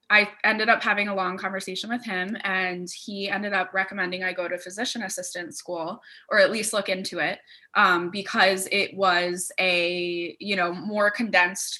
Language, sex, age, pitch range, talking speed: English, female, 10-29, 180-200 Hz, 180 wpm